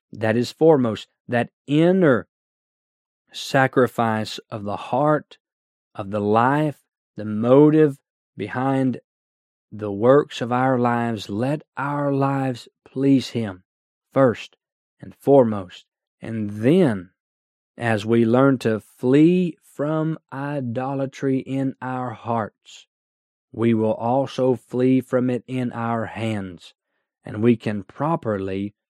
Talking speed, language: 110 wpm, English